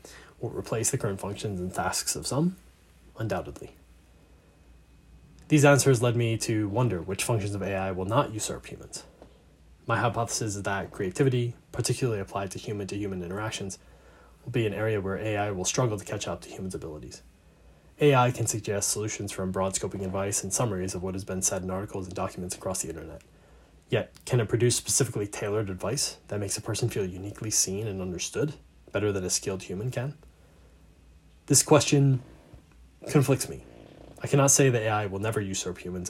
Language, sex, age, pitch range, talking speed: English, male, 20-39, 90-115 Hz, 175 wpm